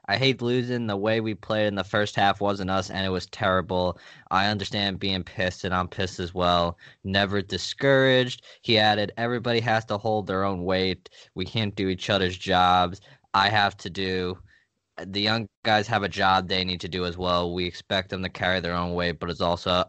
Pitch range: 95-115 Hz